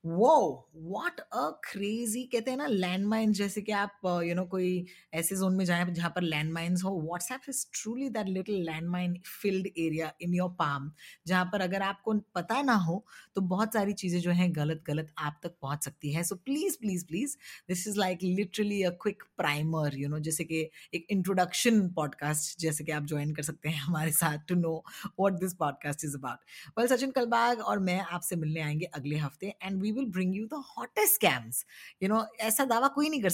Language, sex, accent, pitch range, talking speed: Hindi, female, native, 155-205 Hz, 140 wpm